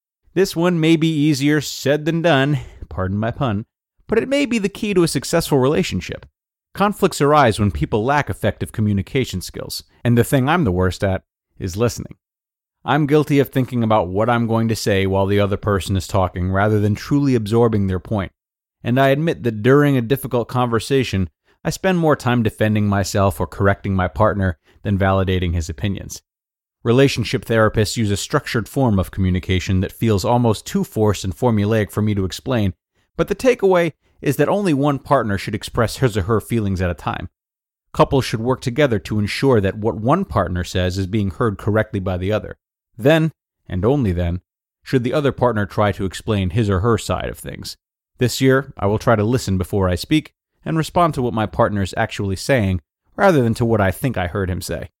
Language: English